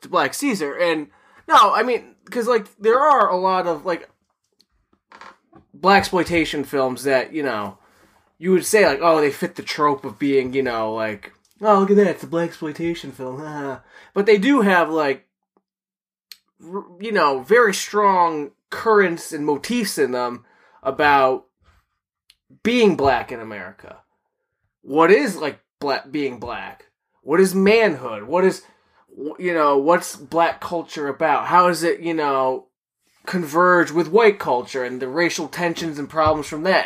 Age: 20-39